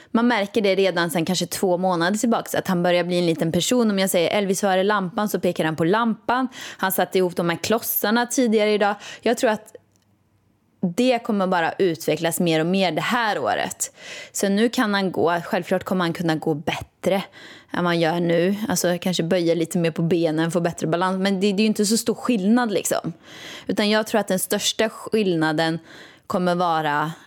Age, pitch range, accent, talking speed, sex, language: 20-39, 170-225 Hz, native, 200 wpm, female, Swedish